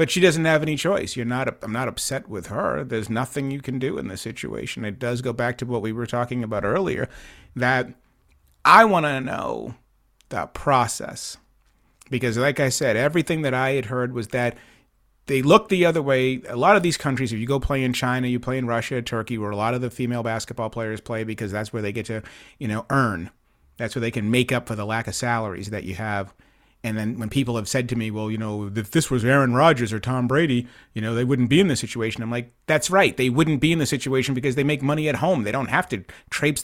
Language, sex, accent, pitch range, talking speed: English, male, American, 115-140 Hz, 245 wpm